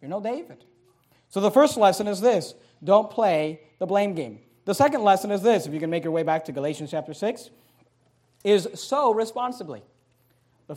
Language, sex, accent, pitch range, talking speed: English, male, American, 175-250 Hz, 190 wpm